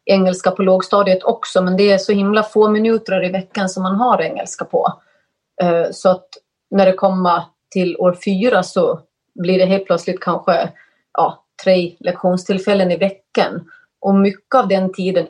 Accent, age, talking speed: native, 30-49, 165 wpm